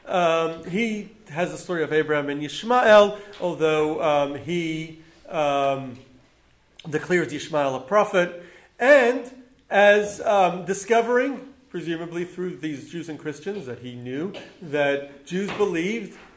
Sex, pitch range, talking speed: male, 145-210 Hz, 120 wpm